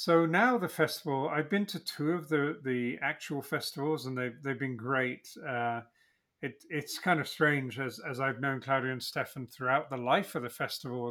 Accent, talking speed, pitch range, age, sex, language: British, 200 wpm, 125-155 Hz, 40-59, male, English